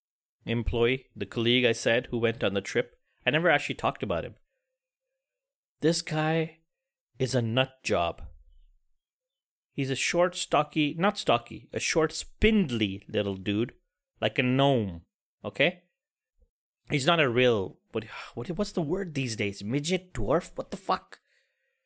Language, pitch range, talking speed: English, 120-195 Hz, 130 wpm